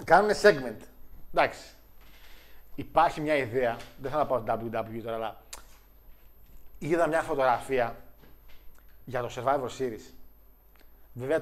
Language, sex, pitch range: Greek, male, 120-160 Hz